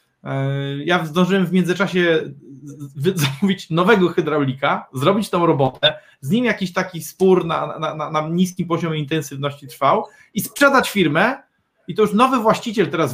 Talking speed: 145 wpm